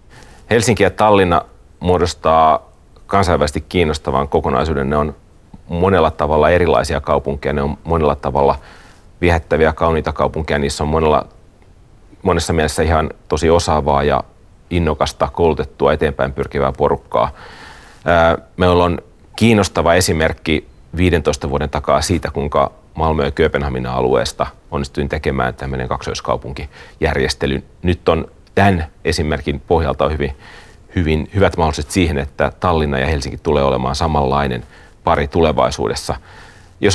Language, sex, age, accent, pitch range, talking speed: Finnish, male, 30-49, native, 70-90 Hz, 115 wpm